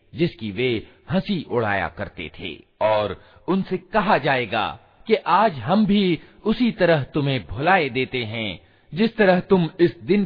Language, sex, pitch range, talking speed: Hindi, male, 115-185 Hz, 145 wpm